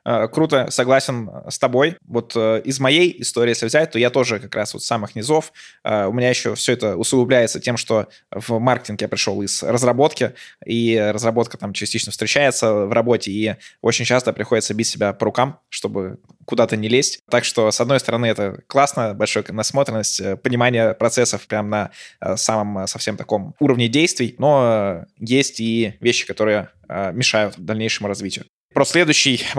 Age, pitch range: 20-39, 110-125 Hz